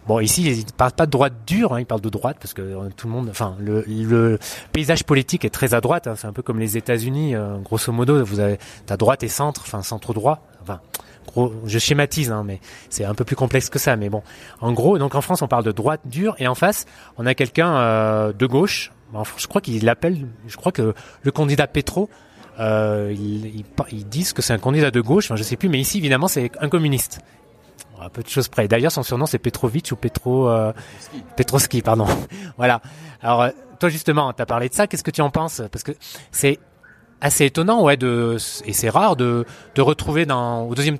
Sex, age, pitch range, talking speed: male, 30-49, 115-150 Hz, 235 wpm